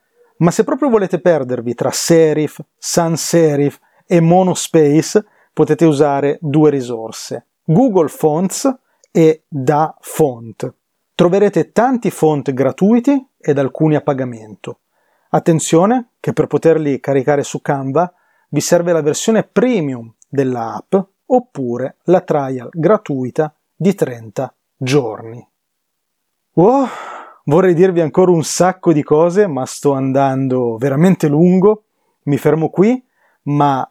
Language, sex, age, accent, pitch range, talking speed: Italian, male, 30-49, native, 145-195 Hz, 115 wpm